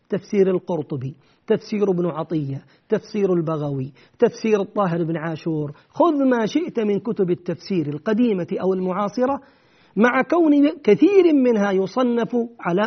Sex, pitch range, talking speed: male, 175-240 Hz, 120 wpm